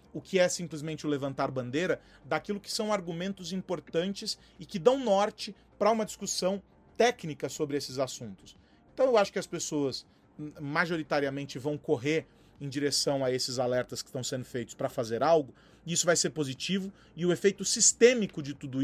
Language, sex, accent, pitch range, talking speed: Portuguese, male, Brazilian, 145-190 Hz, 175 wpm